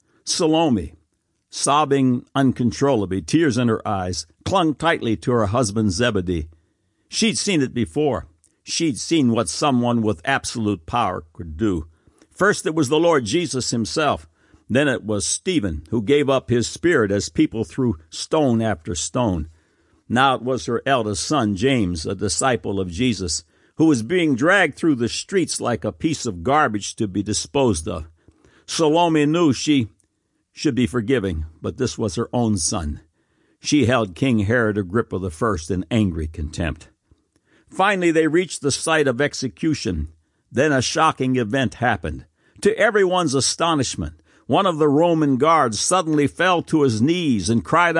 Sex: male